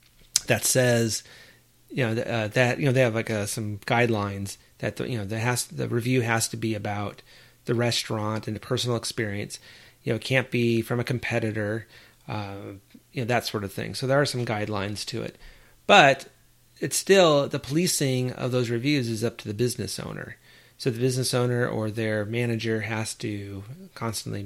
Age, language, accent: 30-49, English, American